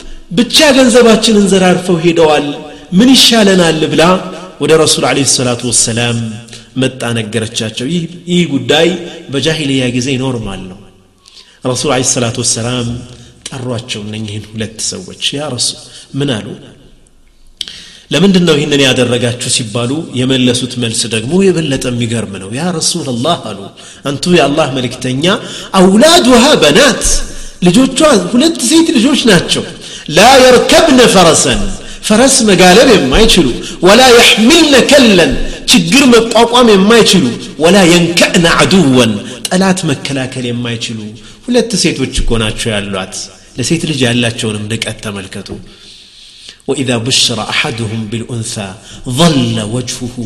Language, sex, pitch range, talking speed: Amharic, male, 120-185 Hz, 85 wpm